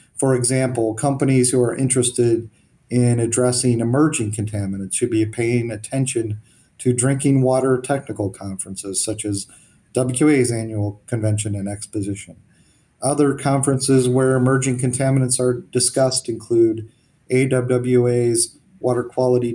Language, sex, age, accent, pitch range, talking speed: English, male, 40-59, American, 115-140 Hz, 115 wpm